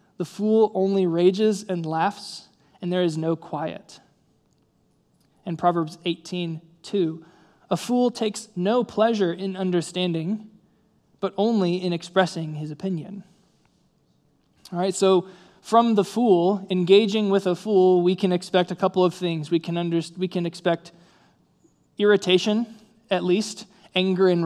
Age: 20-39